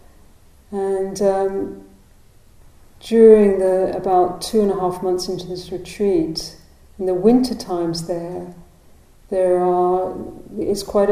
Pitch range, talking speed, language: 180-200 Hz, 120 wpm, English